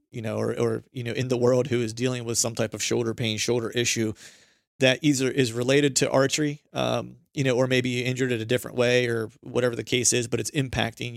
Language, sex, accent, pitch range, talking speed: English, male, American, 115-130 Hz, 240 wpm